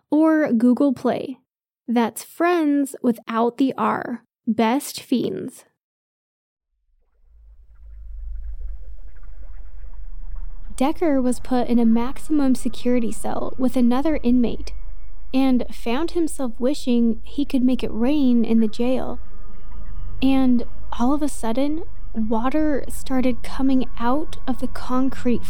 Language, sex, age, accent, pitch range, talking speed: English, female, 10-29, American, 215-265 Hz, 105 wpm